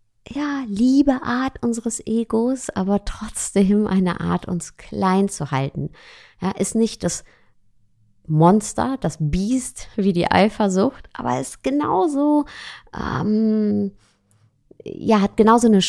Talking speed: 115 wpm